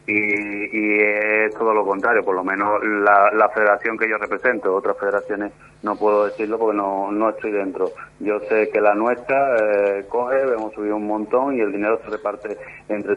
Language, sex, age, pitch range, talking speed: Spanish, male, 30-49, 105-115 Hz, 190 wpm